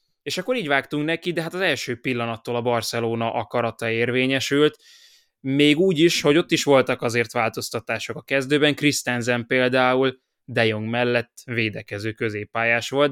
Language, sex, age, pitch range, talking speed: Hungarian, male, 20-39, 115-145 Hz, 150 wpm